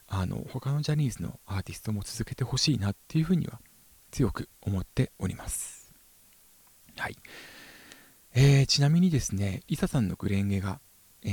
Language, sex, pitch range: Japanese, male, 100-145 Hz